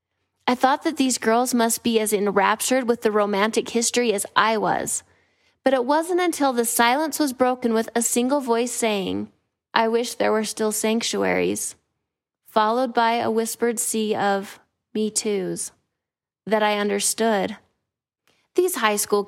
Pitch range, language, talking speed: 195-235 Hz, English, 155 wpm